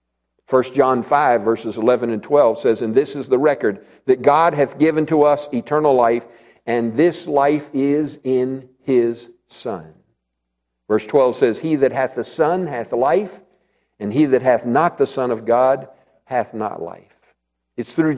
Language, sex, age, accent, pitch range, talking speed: English, male, 50-69, American, 140-200 Hz, 170 wpm